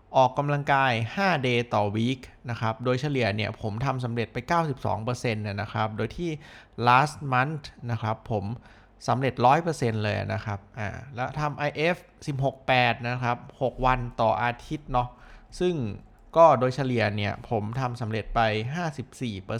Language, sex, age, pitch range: Thai, male, 20-39, 110-130 Hz